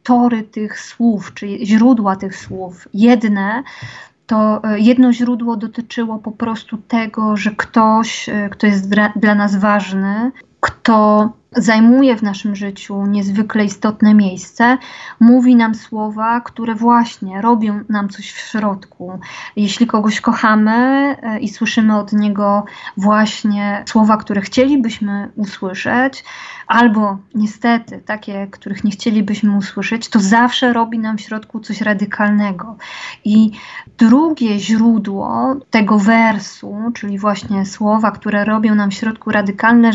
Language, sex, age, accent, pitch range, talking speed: Polish, female, 20-39, native, 210-235 Hz, 125 wpm